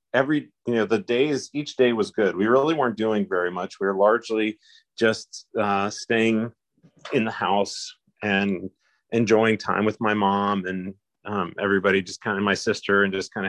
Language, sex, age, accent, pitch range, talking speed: English, male, 30-49, American, 95-115 Hz, 180 wpm